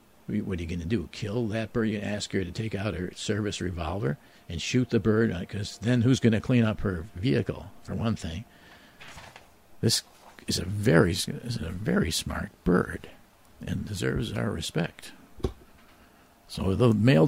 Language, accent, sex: English, American, male